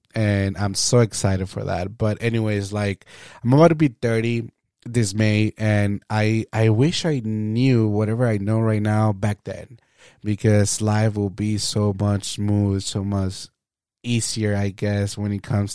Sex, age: male, 20-39